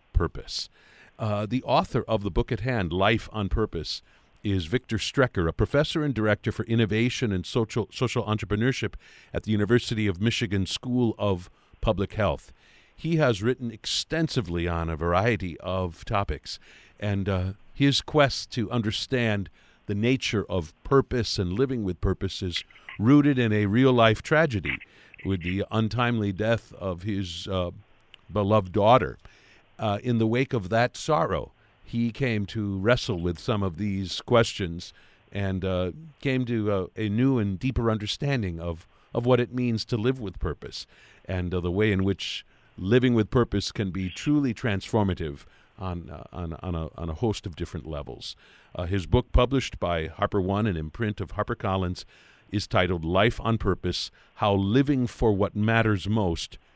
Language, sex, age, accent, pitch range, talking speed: English, male, 50-69, American, 95-120 Hz, 160 wpm